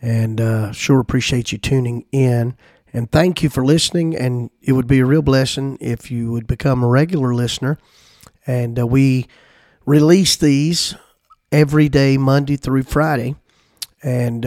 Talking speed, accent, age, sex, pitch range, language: 155 wpm, American, 50-69, male, 120-145 Hz, English